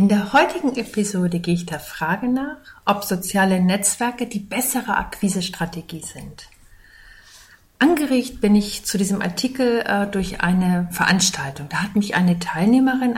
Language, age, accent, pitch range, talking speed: German, 50-69, German, 170-230 Hz, 135 wpm